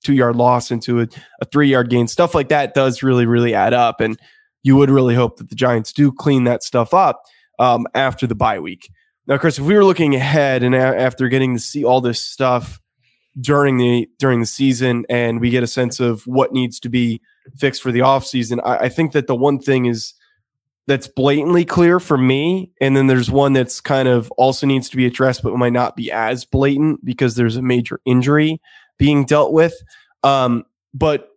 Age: 20-39